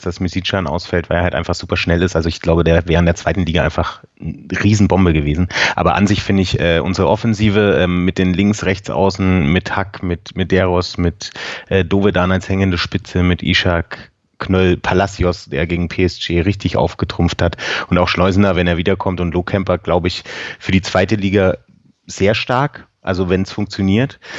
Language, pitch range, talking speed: German, 90-105 Hz, 185 wpm